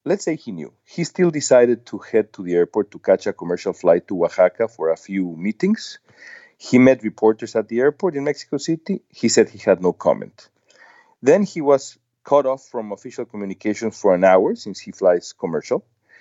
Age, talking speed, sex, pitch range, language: 40-59, 195 wpm, male, 105-135 Hz, English